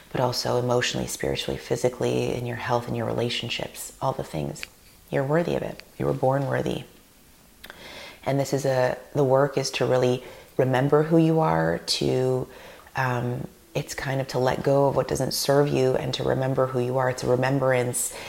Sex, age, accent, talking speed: female, 30-49, American, 185 wpm